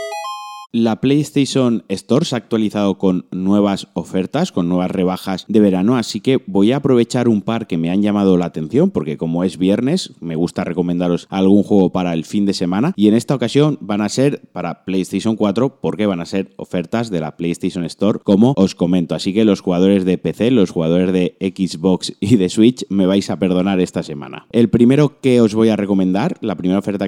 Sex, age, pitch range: male, 30-49, 90-115 Hz